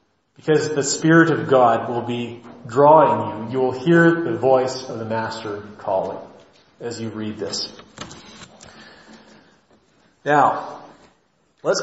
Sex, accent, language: male, American, English